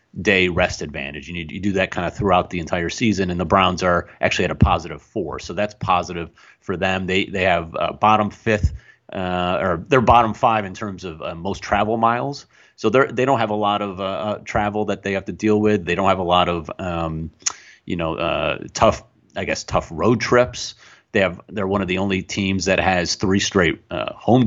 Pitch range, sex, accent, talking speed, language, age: 90-110 Hz, male, American, 225 wpm, English, 30-49